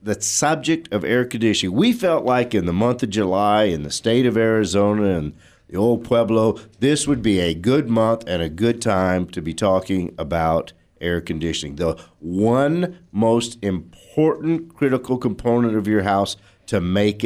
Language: English